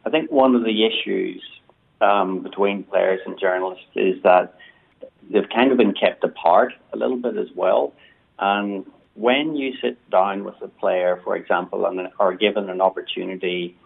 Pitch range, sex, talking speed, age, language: 90-110 Hz, male, 170 wpm, 40-59, English